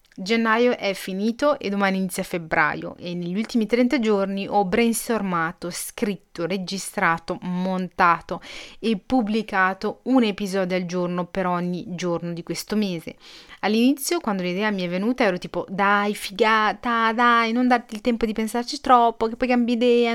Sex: female